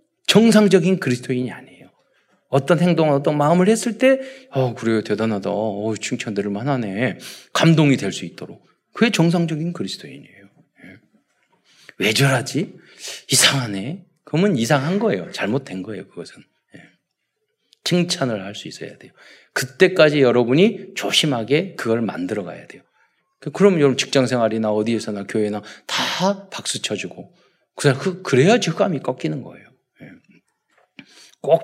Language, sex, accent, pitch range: Korean, male, native, 125-200 Hz